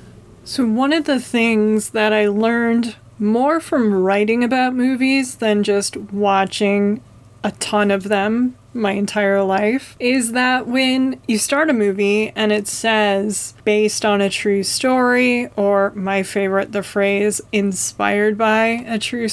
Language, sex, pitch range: English, female, 200-230 Hz